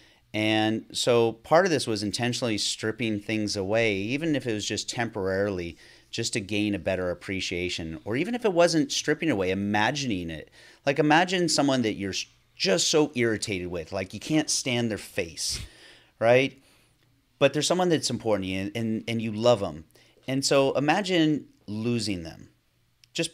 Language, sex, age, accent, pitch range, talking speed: English, male, 30-49, American, 100-130 Hz, 165 wpm